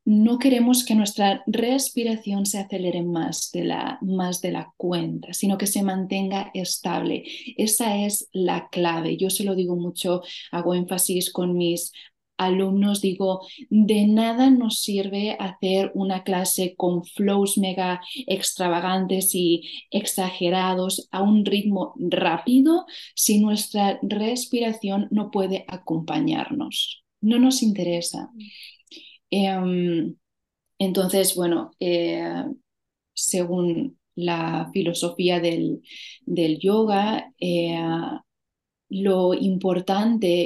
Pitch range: 180-220 Hz